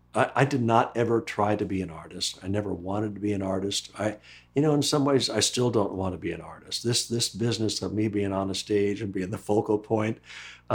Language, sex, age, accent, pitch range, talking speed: English, male, 60-79, American, 95-120 Hz, 245 wpm